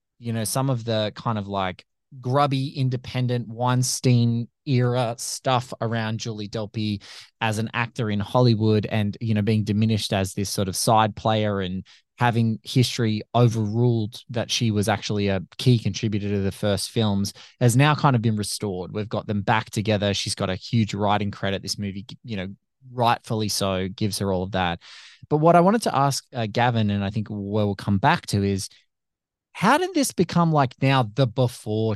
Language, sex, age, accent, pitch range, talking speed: English, male, 20-39, Australian, 105-140 Hz, 190 wpm